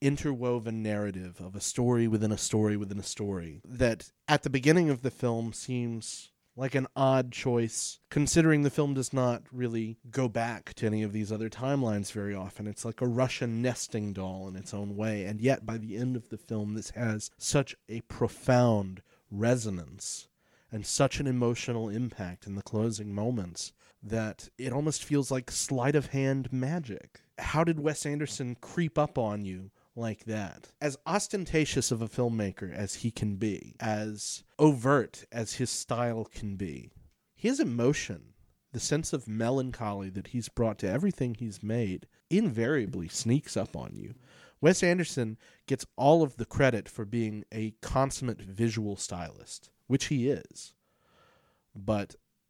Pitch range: 105-135 Hz